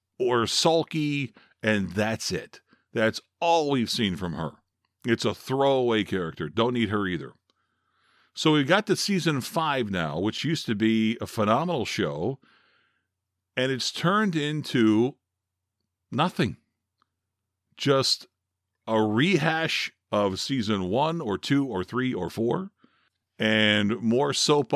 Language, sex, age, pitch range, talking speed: English, male, 50-69, 105-145 Hz, 130 wpm